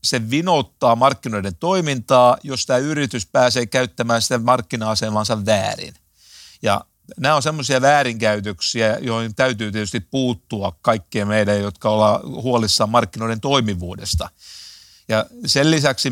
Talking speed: 115 wpm